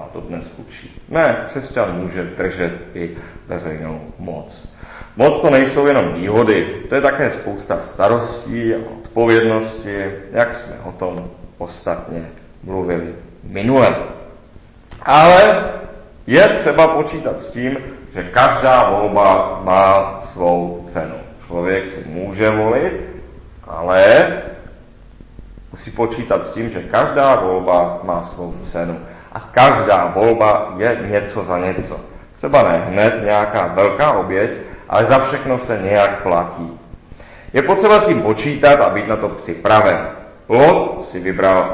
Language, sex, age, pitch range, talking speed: Czech, male, 40-59, 90-115 Hz, 125 wpm